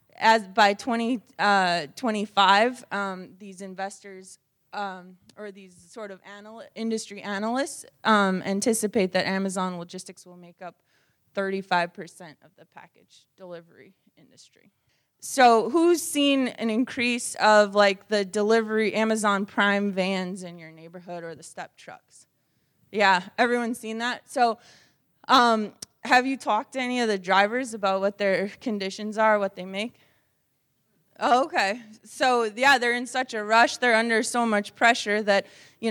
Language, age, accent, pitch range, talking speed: English, 20-39, American, 190-225 Hz, 145 wpm